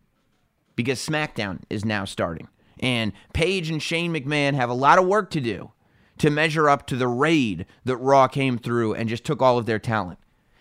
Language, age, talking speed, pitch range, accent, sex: English, 30-49, 190 wpm, 110-150 Hz, American, male